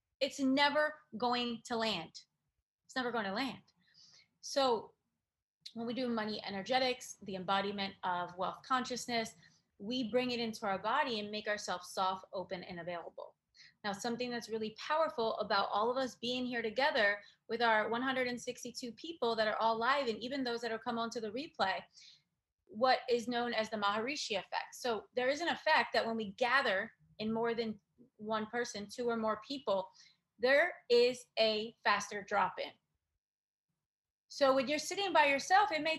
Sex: female